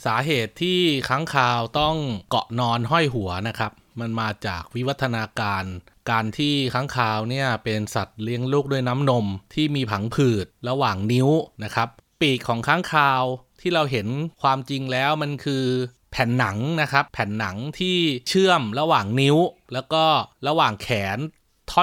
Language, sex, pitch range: Thai, male, 110-150 Hz